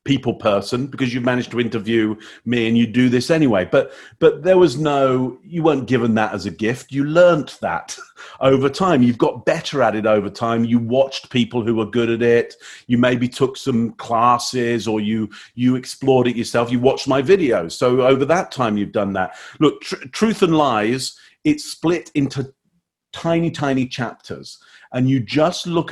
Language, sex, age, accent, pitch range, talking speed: English, male, 40-59, British, 120-155 Hz, 190 wpm